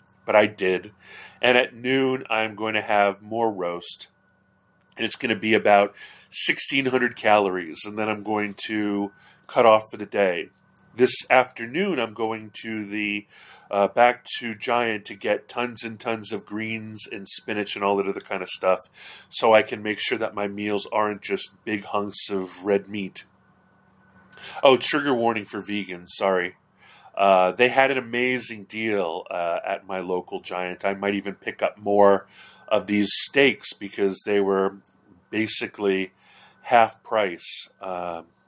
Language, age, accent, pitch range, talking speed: English, 30-49, American, 100-115 Hz, 160 wpm